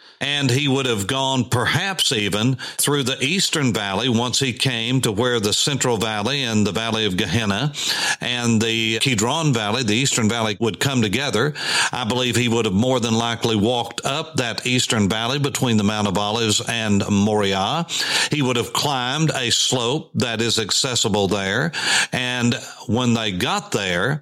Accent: American